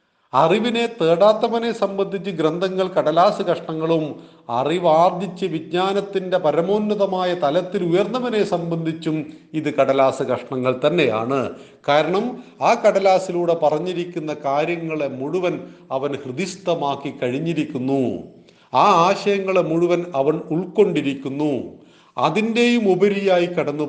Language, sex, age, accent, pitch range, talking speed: Malayalam, male, 40-59, native, 150-195 Hz, 85 wpm